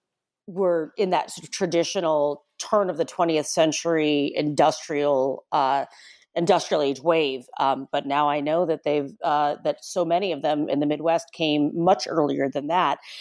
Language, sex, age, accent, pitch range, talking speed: English, female, 40-59, American, 140-170 Hz, 170 wpm